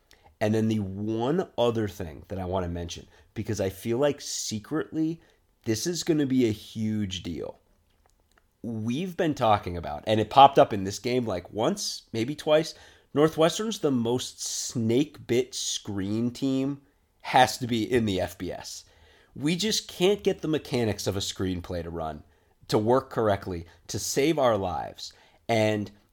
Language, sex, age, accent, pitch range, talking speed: English, male, 30-49, American, 100-125 Hz, 160 wpm